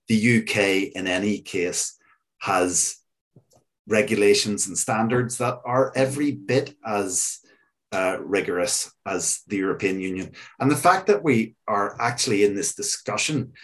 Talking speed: 130 wpm